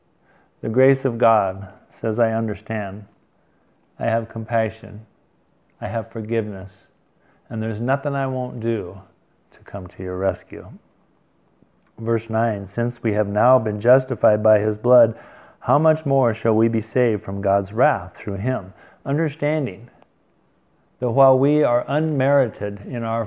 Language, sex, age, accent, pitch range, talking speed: English, male, 50-69, American, 105-130 Hz, 140 wpm